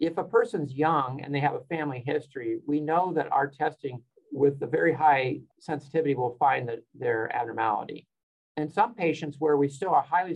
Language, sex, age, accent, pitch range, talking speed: English, male, 50-69, American, 130-160 Hz, 190 wpm